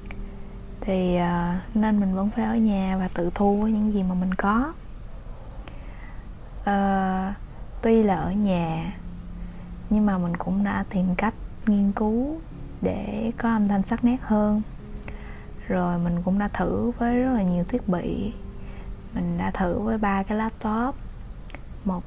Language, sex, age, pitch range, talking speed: Vietnamese, female, 20-39, 185-225 Hz, 150 wpm